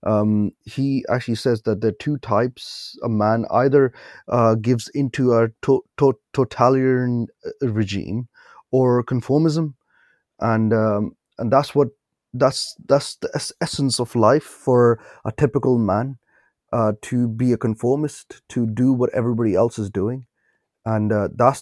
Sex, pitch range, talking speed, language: male, 105-125 Hz, 145 wpm, English